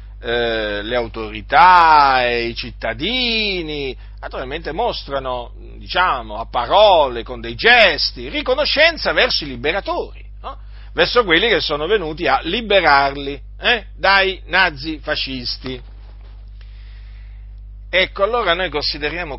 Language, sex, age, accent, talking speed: Italian, male, 50-69, native, 100 wpm